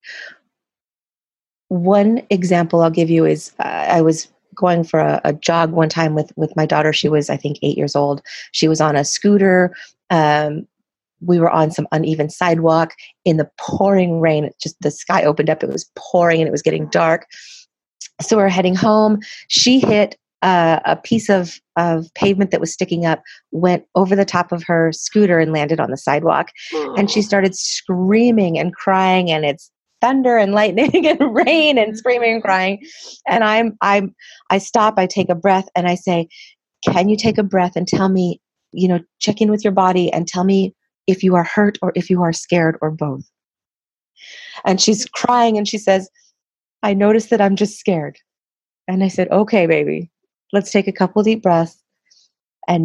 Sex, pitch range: female, 165-205 Hz